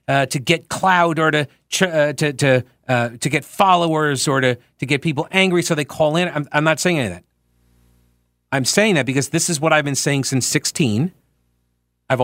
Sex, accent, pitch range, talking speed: male, American, 85-145 Hz, 215 wpm